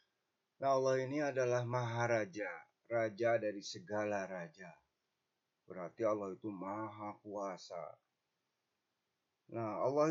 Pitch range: 100-140 Hz